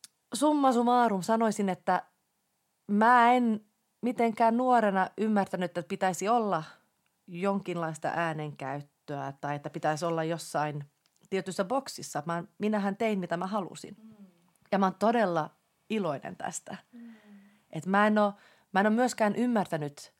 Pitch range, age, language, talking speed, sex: 165-230 Hz, 30-49, Finnish, 115 wpm, female